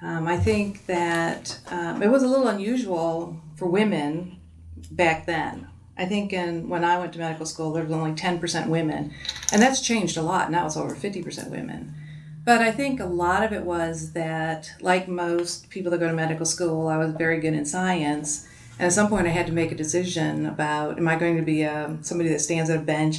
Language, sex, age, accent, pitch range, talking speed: English, female, 40-59, American, 155-180 Hz, 210 wpm